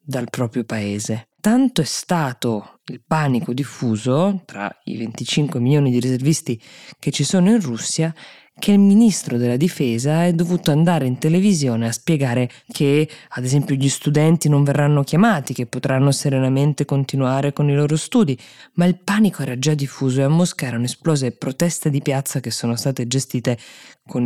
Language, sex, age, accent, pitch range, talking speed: Italian, female, 20-39, native, 120-155 Hz, 165 wpm